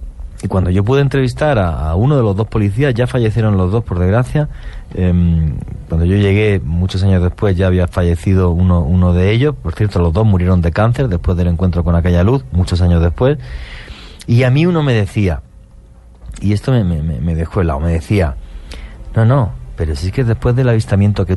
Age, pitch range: 30-49, 85-105 Hz